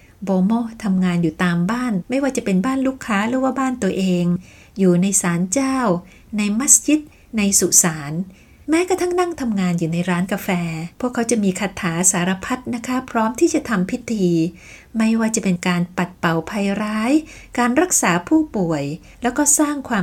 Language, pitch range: Thai, 180-245 Hz